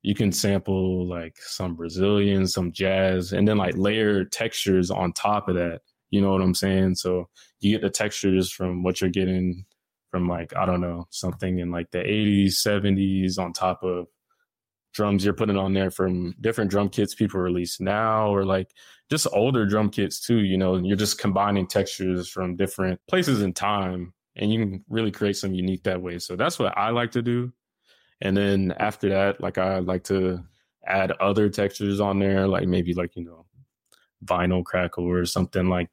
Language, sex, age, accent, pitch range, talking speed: English, male, 20-39, American, 90-105 Hz, 190 wpm